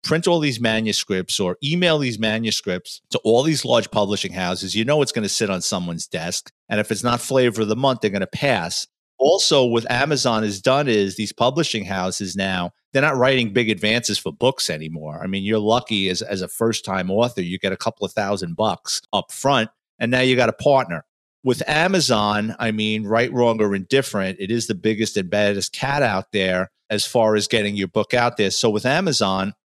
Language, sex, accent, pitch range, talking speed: English, male, American, 105-125 Hz, 215 wpm